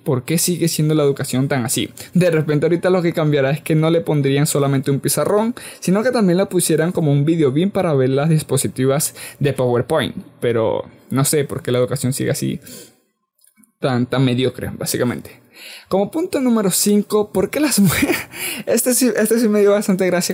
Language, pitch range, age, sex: Spanish, 140-185 Hz, 20-39, male